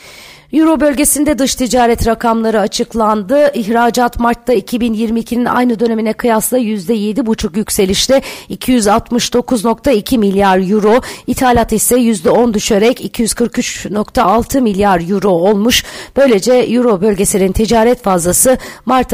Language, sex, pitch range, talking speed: Turkish, female, 200-245 Hz, 95 wpm